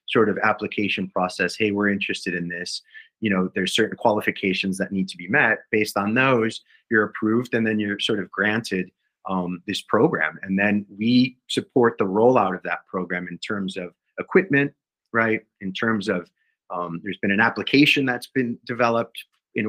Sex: male